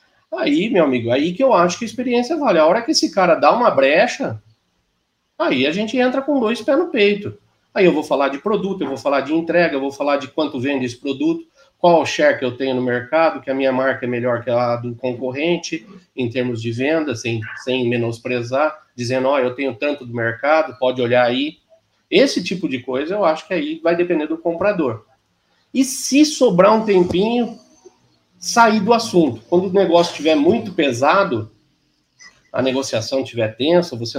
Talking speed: 200 wpm